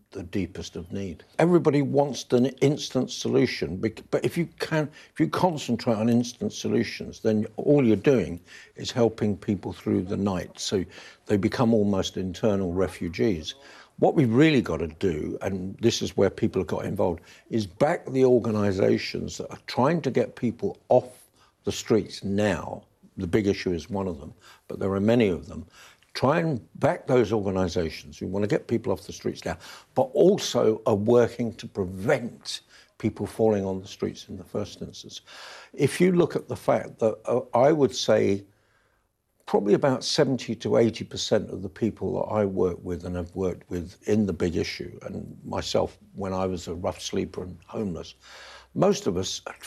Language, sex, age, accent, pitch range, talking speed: English, male, 60-79, British, 95-120 Hz, 180 wpm